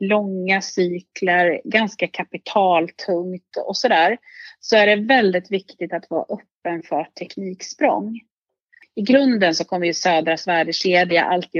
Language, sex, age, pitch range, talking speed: Swedish, female, 30-49, 175-255 Hz, 125 wpm